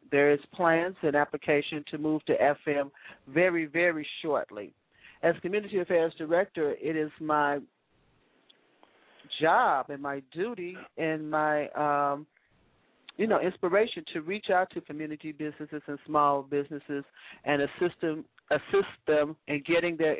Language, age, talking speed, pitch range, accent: English, 40-59, 135 wpm, 145-170 Hz, American